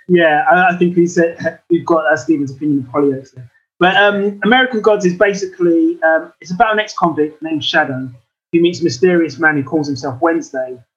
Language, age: English, 20-39